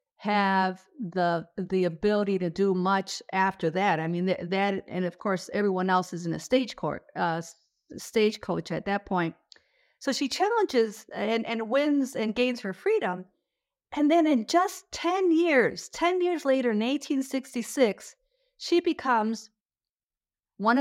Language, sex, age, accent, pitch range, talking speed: English, female, 50-69, American, 195-255 Hz, 150 wpm